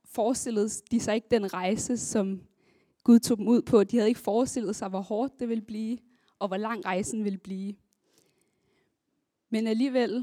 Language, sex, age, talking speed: Danish, female, 20-39, 175 wpm